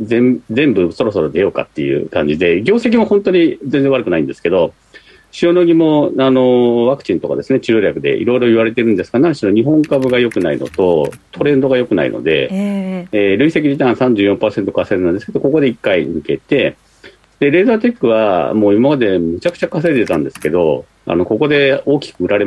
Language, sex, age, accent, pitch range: Japanese, male, 40-59, native, 115-175 Hz